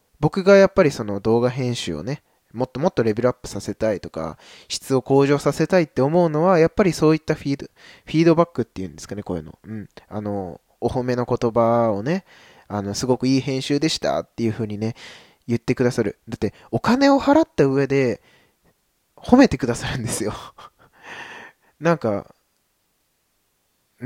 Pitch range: 105-150 Hz